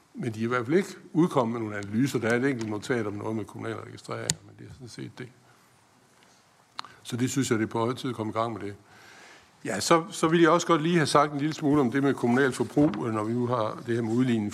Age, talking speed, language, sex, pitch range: 60-79, 275 wpm, Danish, male, 115-135 Hz